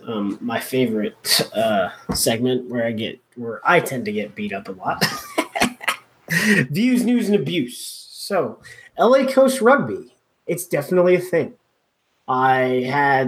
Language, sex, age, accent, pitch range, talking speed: English, male, 20-39, American, 120-145 Hz, 140 wpm